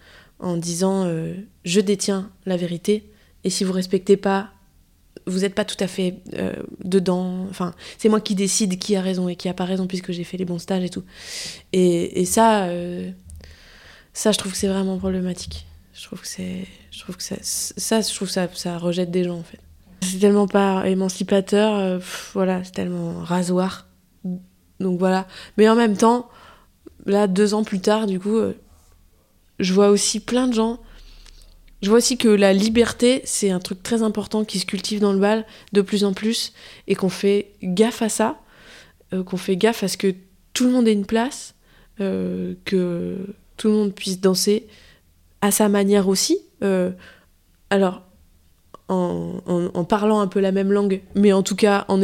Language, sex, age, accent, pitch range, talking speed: French, female, 20-39, French, 180-210 Hz, 180 wpm